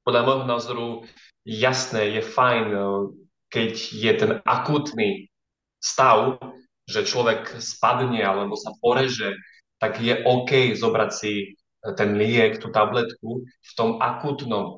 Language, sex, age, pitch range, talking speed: Slovak, male, 20-39, 110-135 Hz, 120 wpm